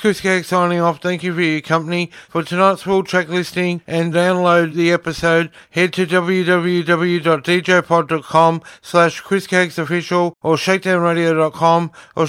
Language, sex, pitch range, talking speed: English, male, 170-185 Hz, 130 wpm